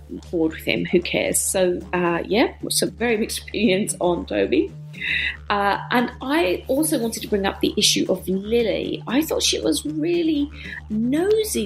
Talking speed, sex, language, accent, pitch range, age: 165 wpm, female, English, British, 180-255 Hz, 40-59